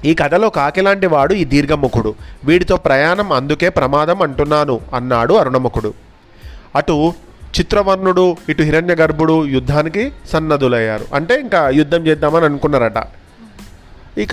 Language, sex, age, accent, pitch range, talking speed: Telugu, male, 30-49, native, 135-175 Hz, 105 wpm